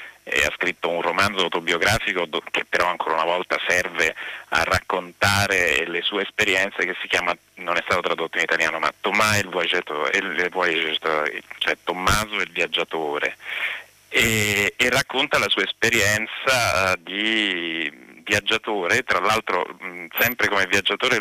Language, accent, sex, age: Italian, native, male, 30-49